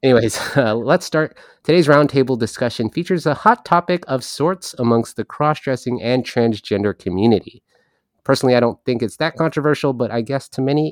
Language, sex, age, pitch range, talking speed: English, male, 30-49, 105-145 Hz, 170 wpm